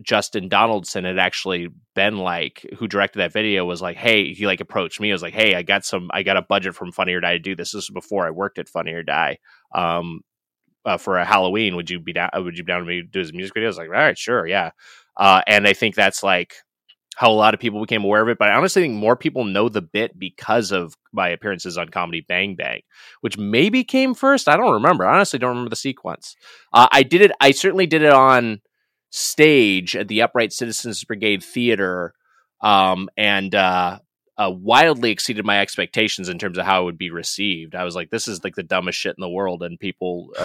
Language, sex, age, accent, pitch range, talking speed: English, male, 20-39, American, 90-115 Hz, 240 wpm